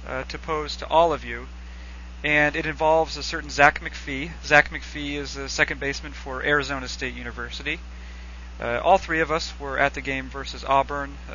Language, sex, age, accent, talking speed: English, male, 40-59, American, 190 wpm